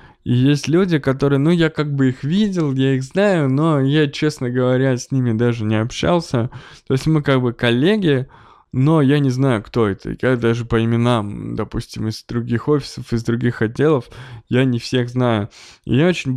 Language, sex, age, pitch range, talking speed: Russian, male, 20-39, 110-140 Hz, 190 wpm